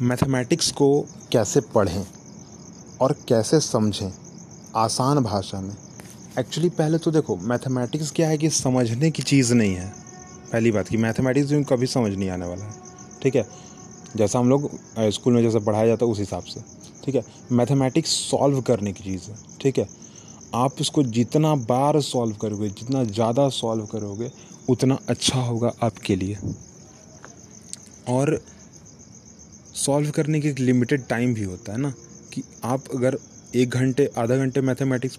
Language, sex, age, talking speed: Hindi, male, 30-49, 160 wpm